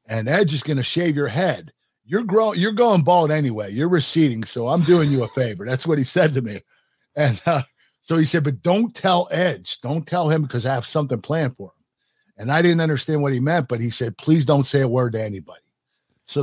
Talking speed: 235 wpm